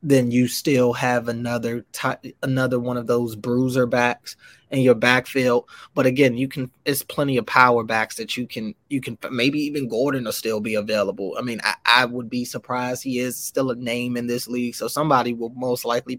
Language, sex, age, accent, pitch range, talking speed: English, male, 20-39, American, 120-135 Hz, 205 wpm